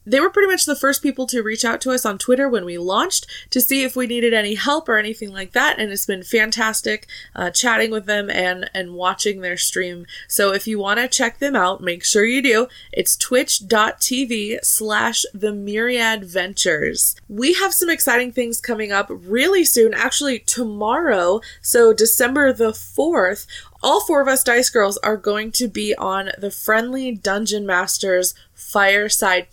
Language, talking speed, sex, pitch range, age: English, 185 wpm, female, 200-250 Hz, 20-39